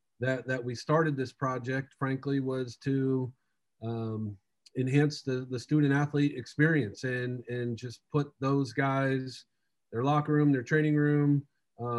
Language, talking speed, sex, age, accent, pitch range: English, 145 wpm, male, 40-59, American, 120-145 Hz